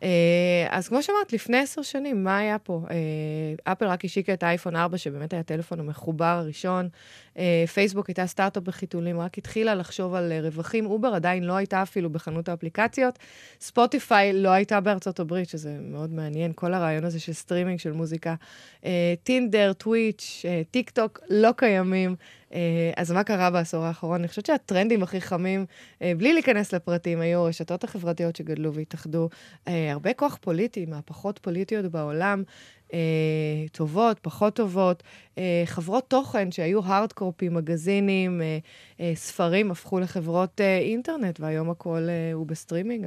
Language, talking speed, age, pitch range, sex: Hebrew, 155 wpm, 20-39, 165-200 Hz, female